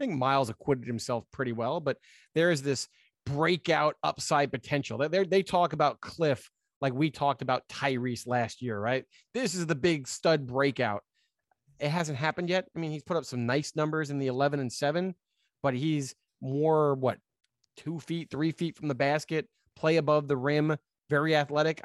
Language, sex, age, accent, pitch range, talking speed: English, male, 30-49, American, 130-160 Hz, 180 wpm